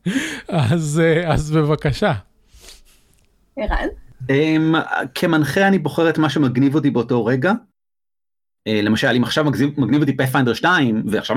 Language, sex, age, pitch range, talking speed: Hebrew, male, 30-49, 120-175 Hz, 105 wpm